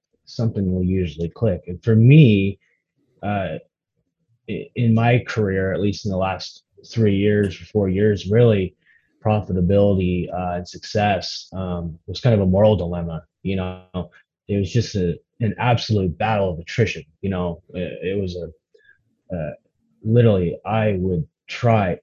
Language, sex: English, male